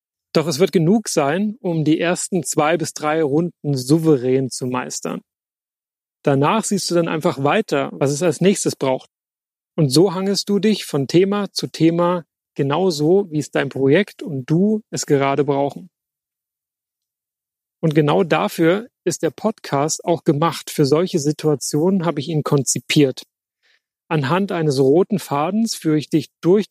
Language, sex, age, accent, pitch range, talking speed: German, male, 30-49, German, 145-185 Hz, 155 wpm